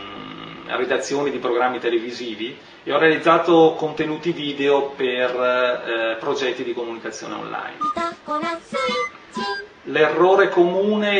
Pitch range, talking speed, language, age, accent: 125-170 Hz, 95 wpm, Italian, 30-49, native